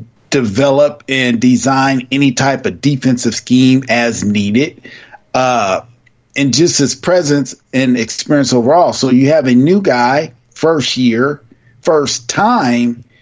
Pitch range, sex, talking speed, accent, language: 120-135 Hz, male, 125 wpm, American, English